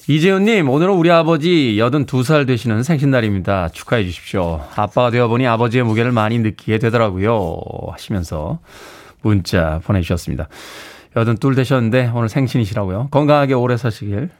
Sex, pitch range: male, 110-150 Hz